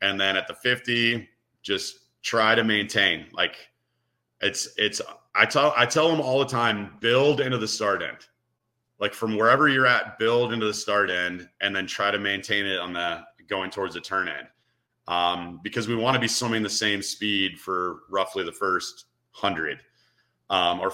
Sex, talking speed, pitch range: male, 185 wpm, 95-120 Hz